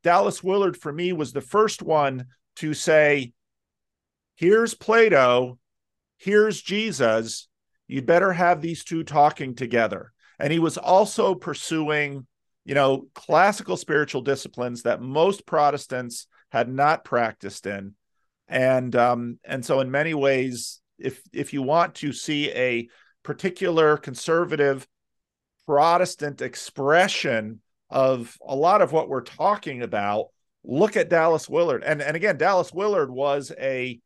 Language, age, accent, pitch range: English, 40-59, American, 125-170 Hz